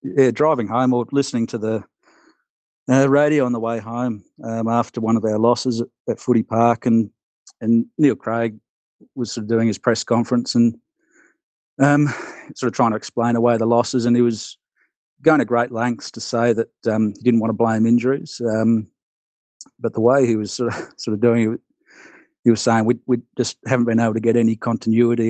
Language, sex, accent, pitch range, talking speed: English, male, Australian, 115-125 Hz, 205 wpm